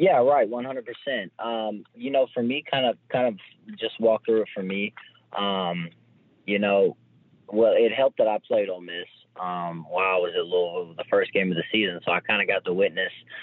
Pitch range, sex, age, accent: 100-120 Hz, male, 20-39, American